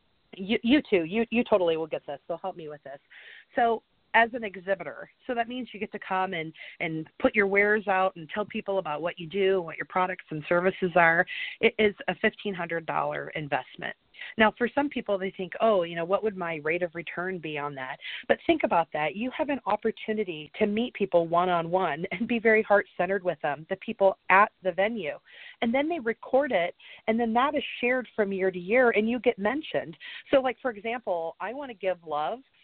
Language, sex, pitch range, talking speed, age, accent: English, female, 170-230 Hz, 215 wpm, 40-59, American